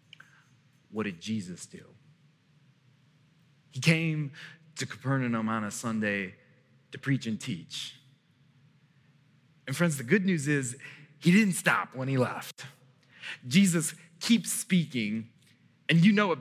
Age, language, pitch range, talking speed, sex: 30-49, English, 145-200 Hz, 125 wpm, male